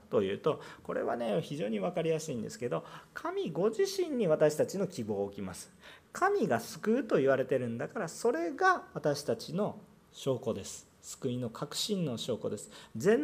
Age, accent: 40-59, native